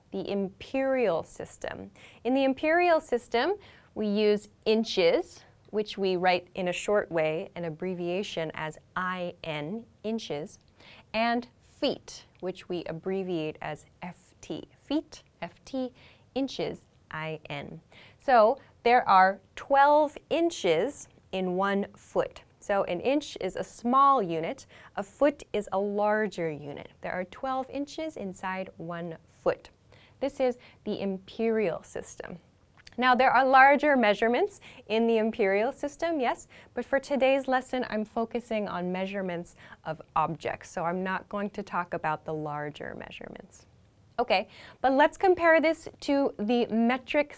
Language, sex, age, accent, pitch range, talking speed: English, female, 10-29, American, 180-260 Hz, 130 wpm